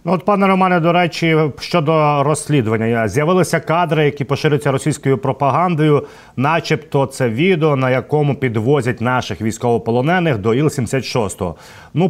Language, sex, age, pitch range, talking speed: Ukrainian, male, 30-49, 120-155 Hz, 125 wpm